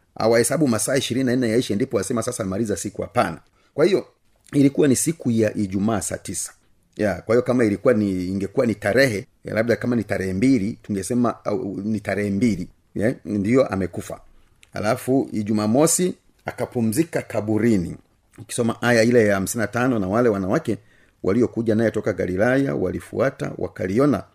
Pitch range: 100-125 Hz